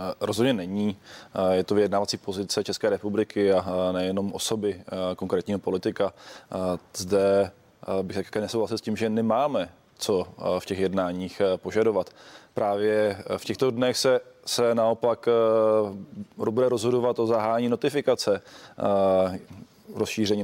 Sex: male